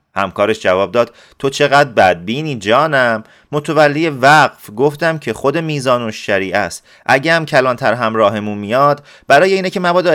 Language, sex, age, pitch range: Persian, male, 30-49, 110-150 Hz